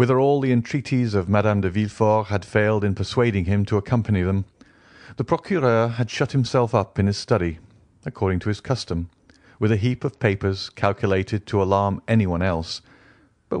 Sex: male